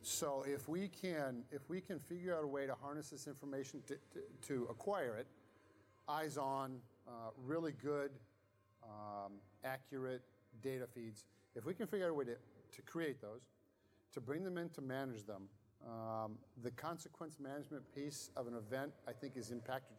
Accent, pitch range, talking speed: American, 120-150 Hz, 175 wpm